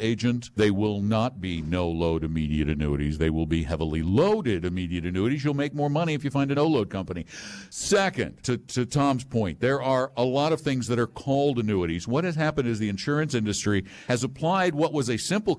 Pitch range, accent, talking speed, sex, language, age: 105-150 Hz, American, 210 wpm, male, English, 60-79